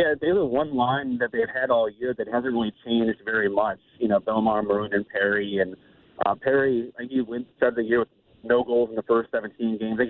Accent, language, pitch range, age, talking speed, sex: American, English, 110-125 Hz, 30-49, 250 wpm, male